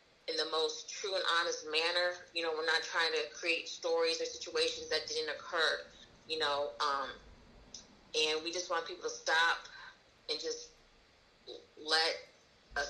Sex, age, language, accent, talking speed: female, 30-49, English, American, 160 wpm